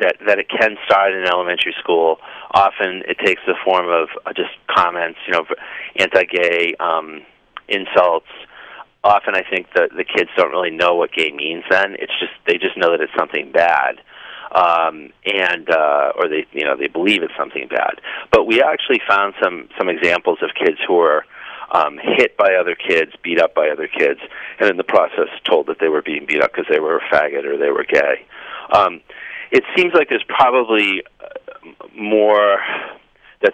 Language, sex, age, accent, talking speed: English, male, 40-59, American, 190 wpm